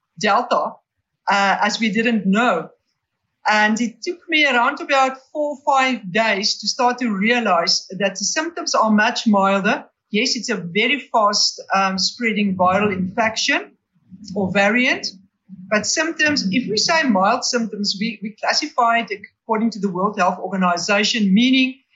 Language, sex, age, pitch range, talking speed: English, female, 50-69, 195-235 Hz, 150 wpm